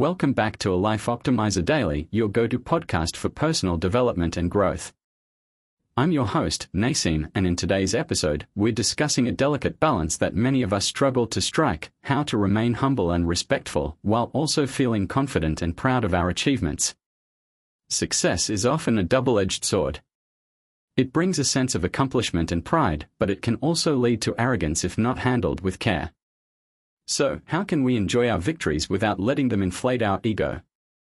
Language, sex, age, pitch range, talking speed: English, male, 40-59, 90-125 Hz, 170 wpm